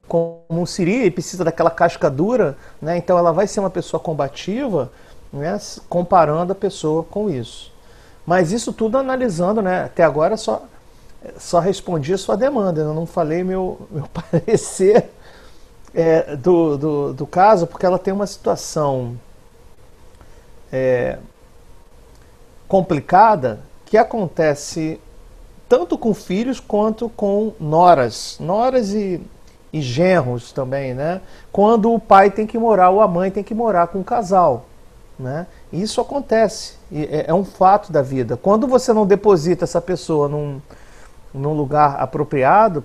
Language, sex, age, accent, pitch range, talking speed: Portuguese, male, 50-69, Brazilian, 150-215 Hz, 140 wpm